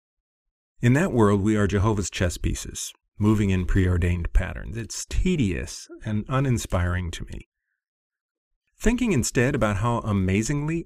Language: English